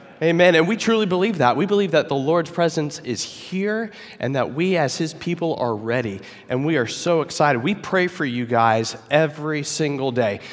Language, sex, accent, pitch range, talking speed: English, male, American, 130-165 Hz, 200 wpm